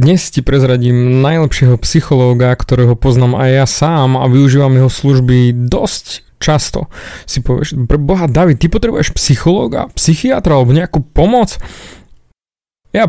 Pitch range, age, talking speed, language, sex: 125-155 Hz, 30-49, 130 wpm, Slovak, male